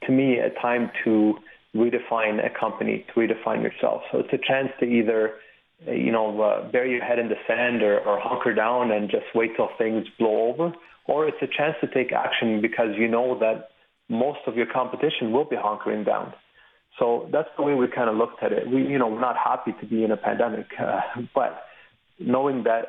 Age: 30-49